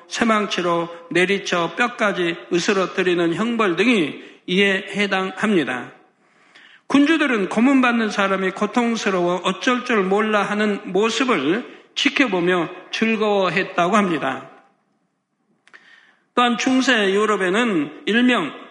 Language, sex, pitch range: Korean, male, 185-240 Hz